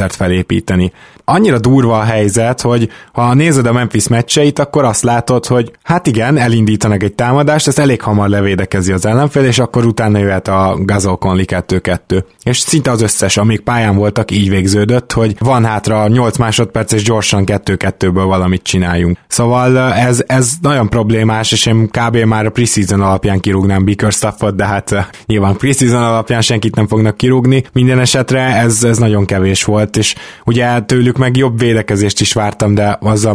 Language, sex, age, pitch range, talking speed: Hungarian, male, 20-39, 105-120 Hz, 165 wpm